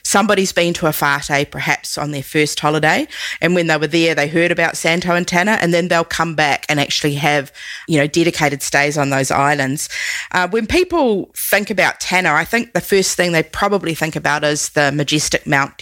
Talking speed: 205 wpm